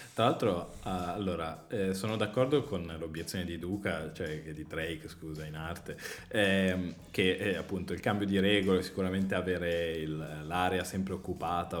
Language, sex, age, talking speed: Italian, male, 20-39, 160 wpm